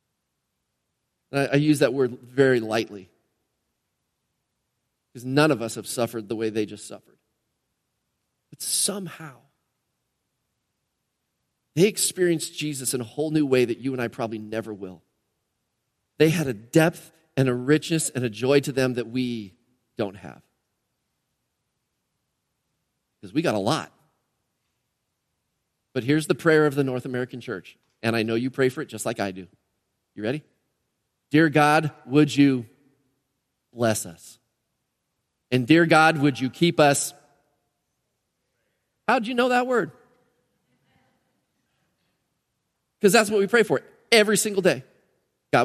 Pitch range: 120-150 Hz